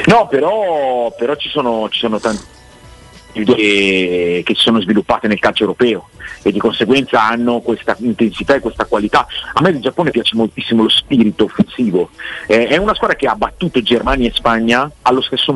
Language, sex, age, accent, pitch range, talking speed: Italian, male, 40-59, native, 110-140 Hz, 175 wpm